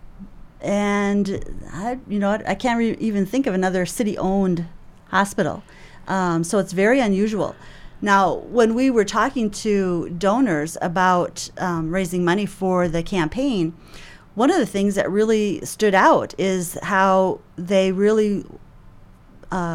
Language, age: English, 40-59